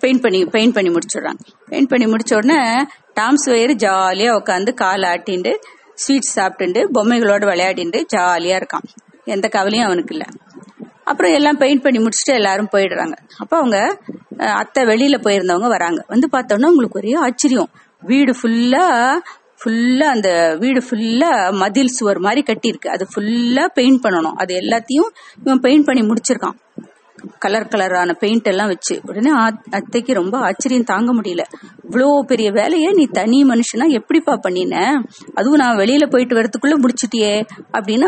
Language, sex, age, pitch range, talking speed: Tamil, female, 30-49, 210-275 Hz, 115 wpm